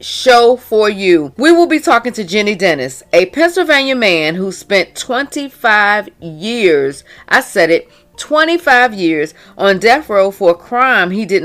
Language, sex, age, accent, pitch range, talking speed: English, female, 40-59, American, 185-265 Hz, 155 wpm